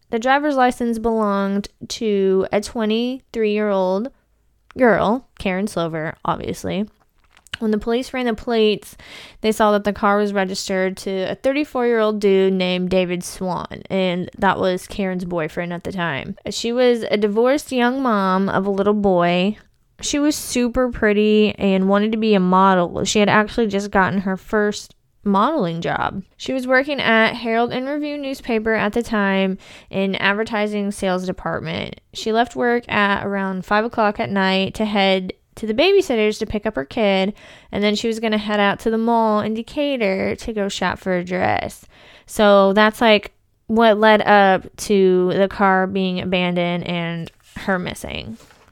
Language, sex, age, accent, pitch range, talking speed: English, female, 20-39, American, 190-230 Hz, 165 wpm